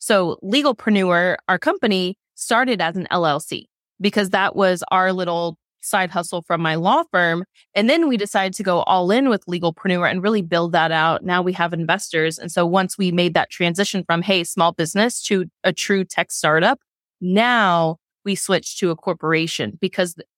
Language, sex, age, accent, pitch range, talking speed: English, female, 20-39, American, 175-215 Hz, 180 wpm